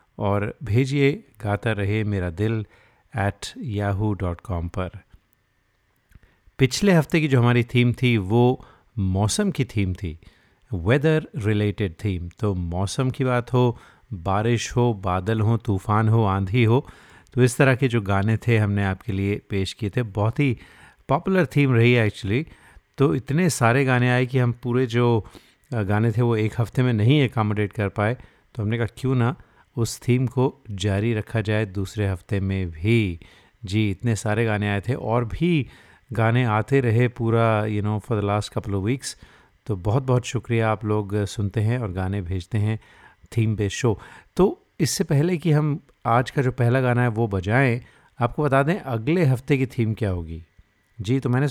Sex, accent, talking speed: male, native, 175 wpm